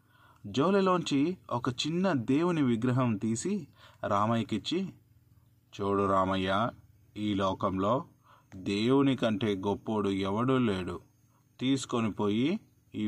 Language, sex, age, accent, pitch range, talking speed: Telugu, male, 30-49, native, 110-165 Hz, 85 wpm